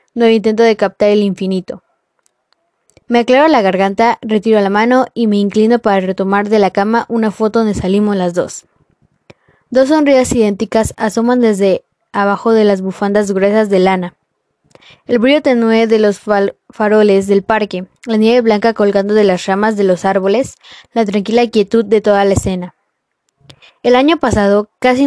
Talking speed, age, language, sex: 165 wpm, 10-29, Spanish, female